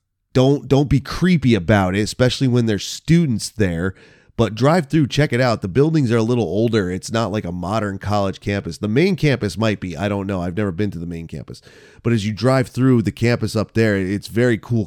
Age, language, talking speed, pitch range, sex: 30-49, English, 230 wpm, 100-125 Hz, male